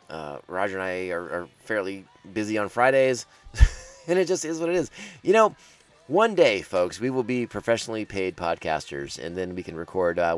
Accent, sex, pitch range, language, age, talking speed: American, male, 95-130 Hz, English, 30-49, 195 wpm